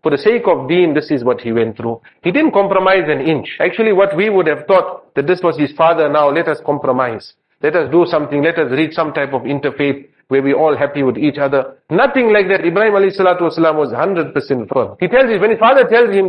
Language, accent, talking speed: English, Indian, 240 wpm